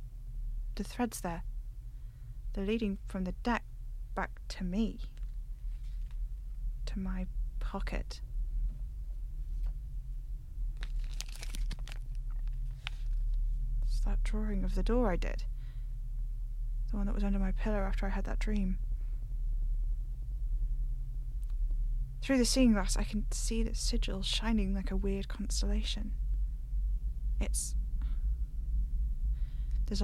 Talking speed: 100 wpm